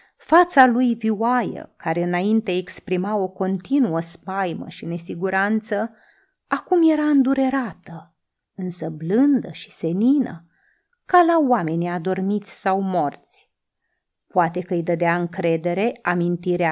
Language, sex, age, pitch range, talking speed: Romanian, female, 30-49, 175-260 Hz, 110 wpm